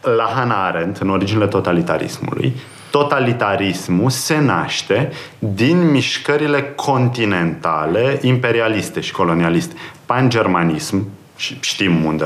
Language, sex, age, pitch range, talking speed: Romanian, male, 30-49, 90-130 Hz, 90 wpm